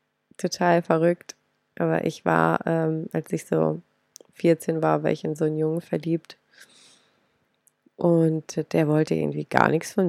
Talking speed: 150 wpm